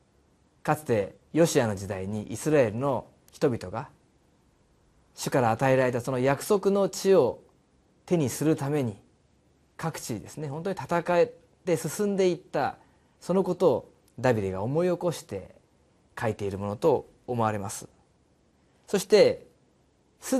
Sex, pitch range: male, 125-205 Hz